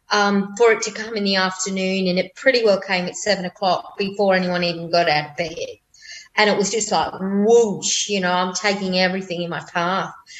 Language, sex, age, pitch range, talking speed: English, female, 30-49, 180-210 Hz, 215 wpm